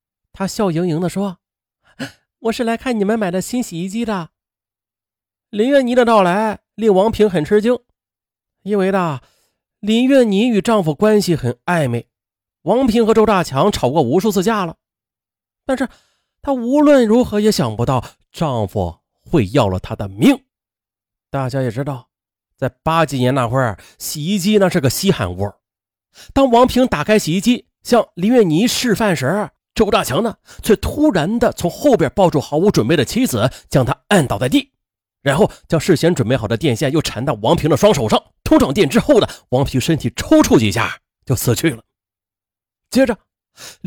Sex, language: male, Chinese